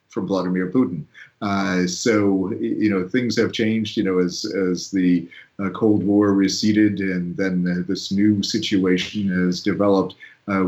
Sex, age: male, 40-59